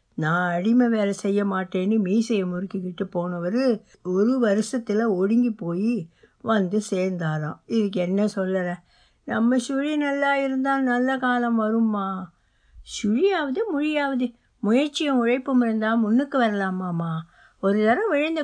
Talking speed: 105 wpm